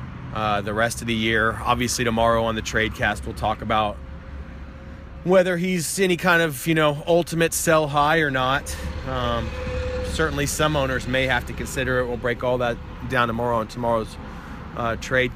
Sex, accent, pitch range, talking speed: male, American, 110-135 Hz, 175 wpm